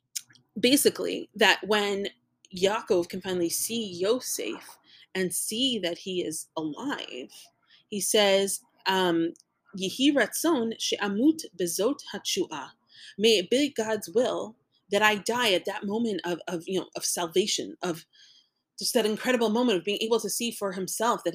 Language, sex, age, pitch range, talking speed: English, female, 30-49, 175-235 Hz, 140 wpm